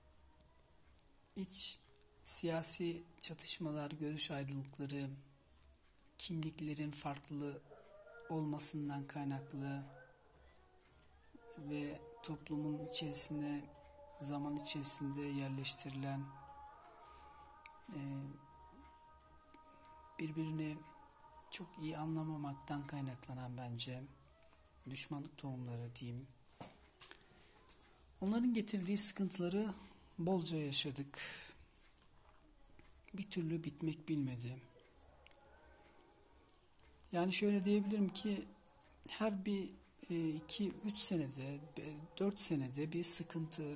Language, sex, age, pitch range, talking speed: Turkish, male, 60-79, 140-185 Hz, 65 wpm